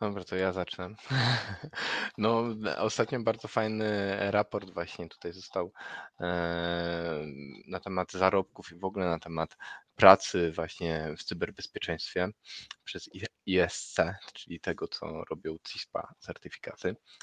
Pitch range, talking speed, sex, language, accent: 80-100 Hz, 110 wpm, male, Polish, native